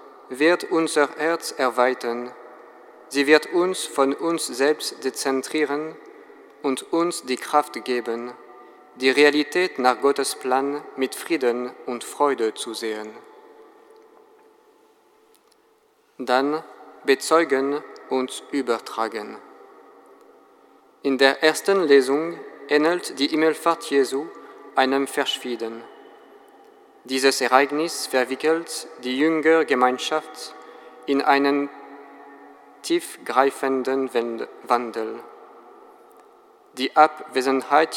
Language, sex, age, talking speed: German, male, 40-59, 80 wpm